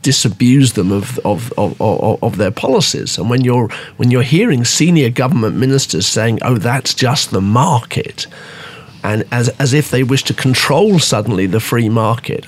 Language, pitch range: English, 120-150 Hz